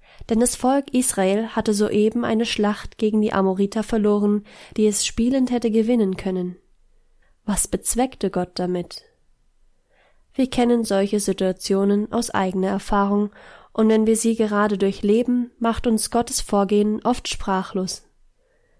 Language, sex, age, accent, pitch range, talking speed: German, female, 20-39, German, 195-230 Hz, 130 wpm